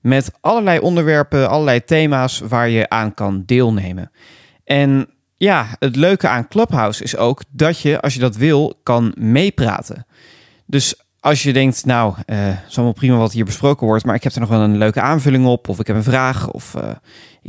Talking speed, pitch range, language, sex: 195 wpm, 115-150 Hz, Dutch, male